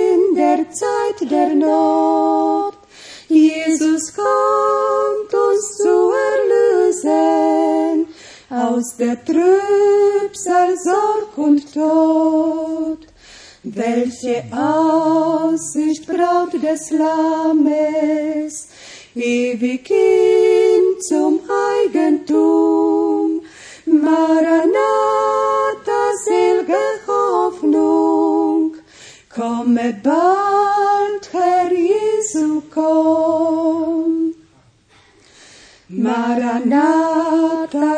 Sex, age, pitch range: female, 40-59, 240-360 Hz